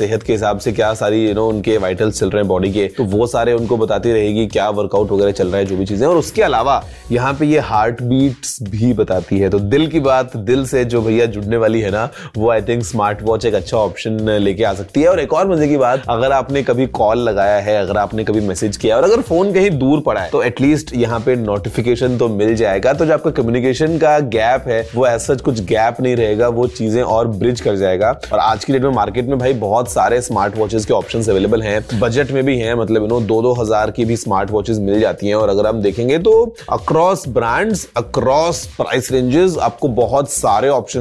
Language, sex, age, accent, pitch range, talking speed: Hindi, male, 20-39, native, 110-135 Hz, 130 wpm